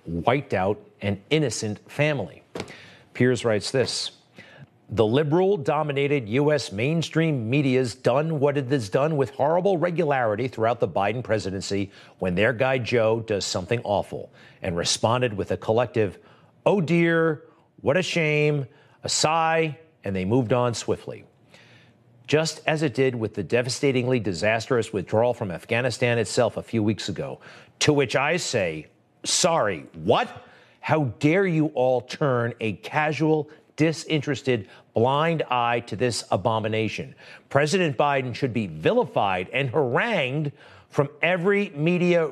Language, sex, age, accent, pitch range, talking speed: English, male, 40-59, American, 115-150 Hz, 135 wpm